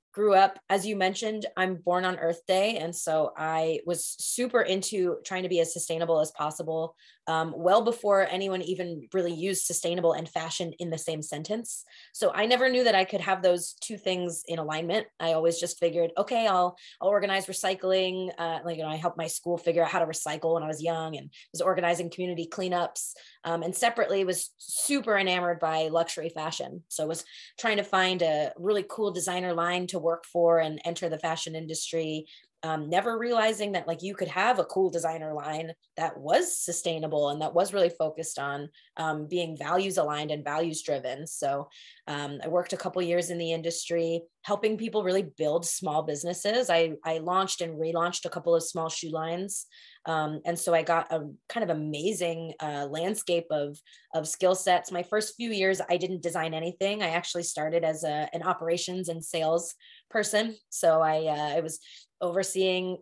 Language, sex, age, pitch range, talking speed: English, female, 20-39, 160-185 Hz, 195 wpm